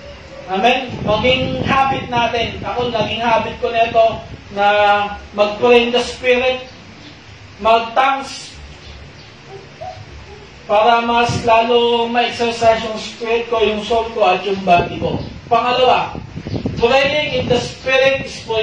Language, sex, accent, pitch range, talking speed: Filipino, male, native, 210-240 Hz, 115 wpm